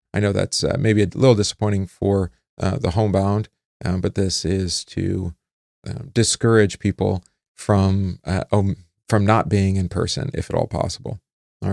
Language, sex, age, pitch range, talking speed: English, male, 40-59, 90-115 Hz, 170 wpm